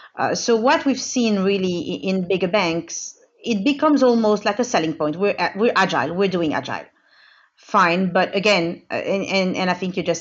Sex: female